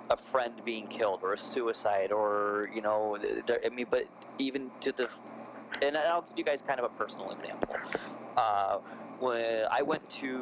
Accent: American